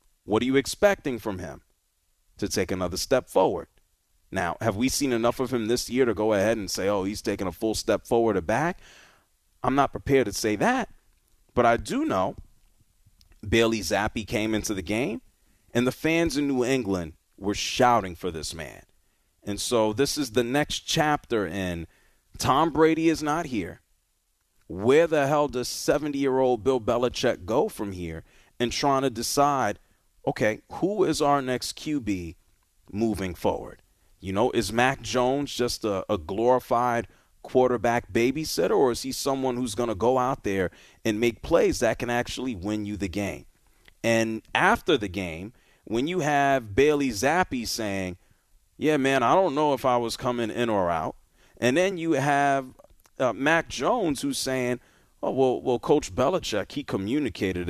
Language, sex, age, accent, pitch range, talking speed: English, male, 30-49, American, 100-135 Hz, 170 wpm